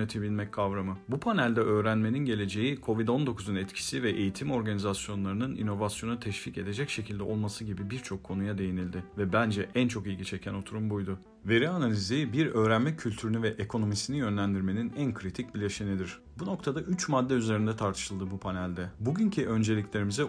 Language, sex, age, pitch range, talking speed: Turkish, male, 40-59, 100-125 Hz, 140 wpm